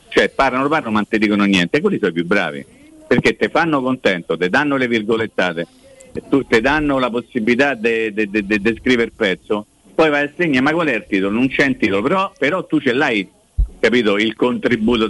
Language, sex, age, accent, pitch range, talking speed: Italian, male, 50-69, native, 100-145 Hz, 225 wpm